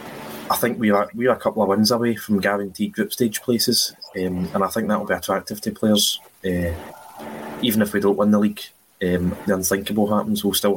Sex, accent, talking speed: male, British, 225 wpm